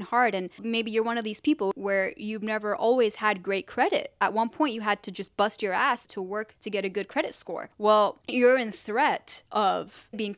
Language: English